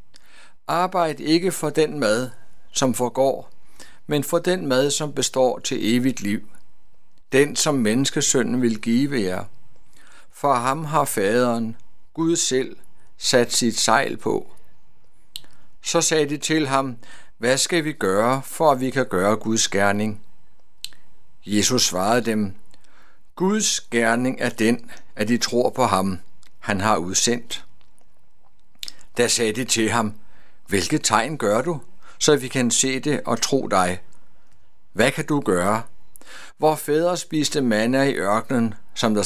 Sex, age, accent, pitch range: male, 60-79, native, 110-150 Hz